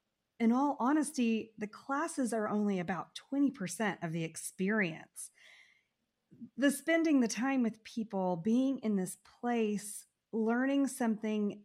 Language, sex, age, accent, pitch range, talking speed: English, female, 30-49, American, 185-240 Hz, 125 wpm